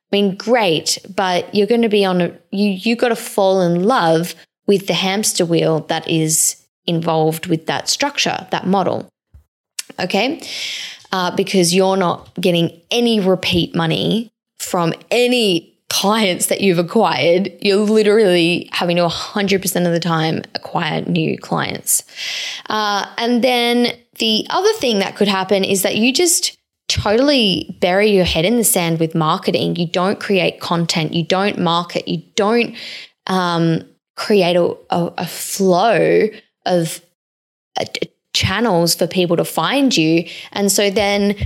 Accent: Australian